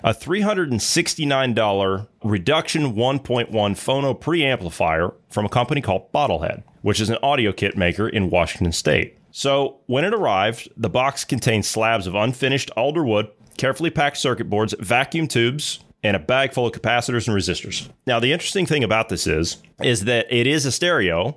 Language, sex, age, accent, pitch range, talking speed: English, male, 30-49, American, 105-135 Hz, 165 wpm